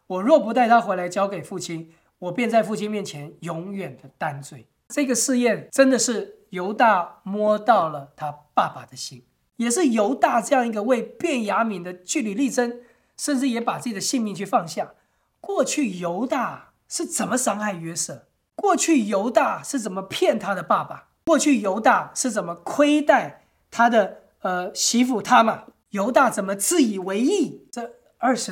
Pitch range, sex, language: 180-255 Hz, male, English